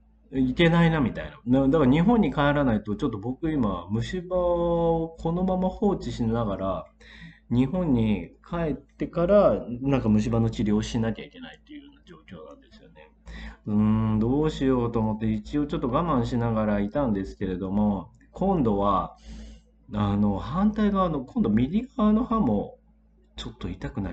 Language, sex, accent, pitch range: Japanese, male, native, 105-170 Hz